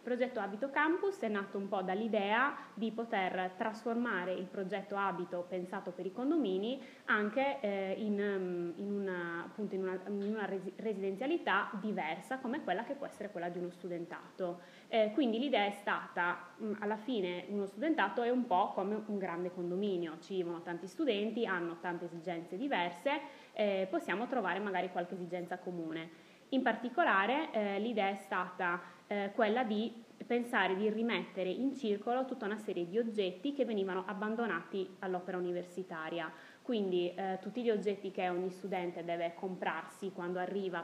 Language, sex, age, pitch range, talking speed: Italian, female, 20-39, 180-225 Hz, 155 wpm